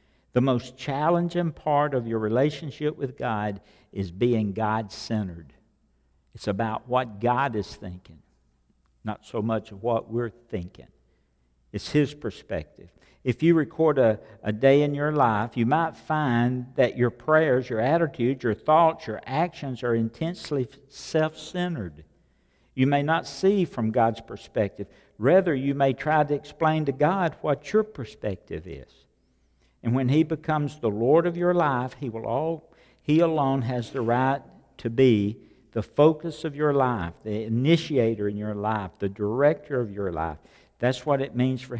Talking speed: 155 wpm